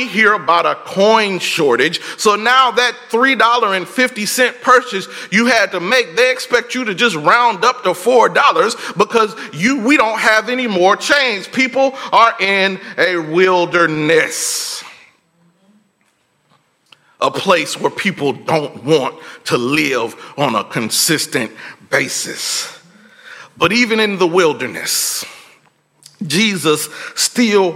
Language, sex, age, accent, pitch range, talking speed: English, male, 40-59, American, 180-245 Hz, 130 wpm